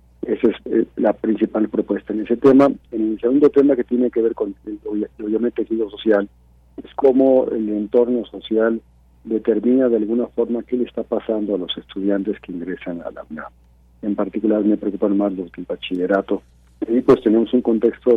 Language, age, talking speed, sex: Spanish, 50-69, 185 wpm, male